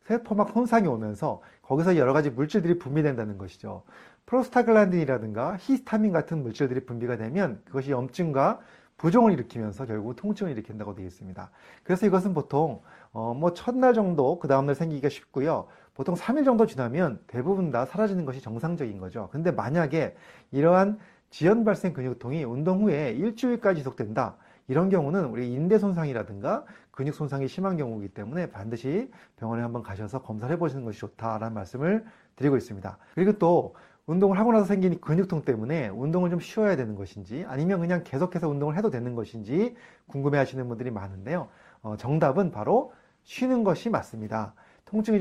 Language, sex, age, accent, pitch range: Korean, male, 30-49, native, 120-185 Hz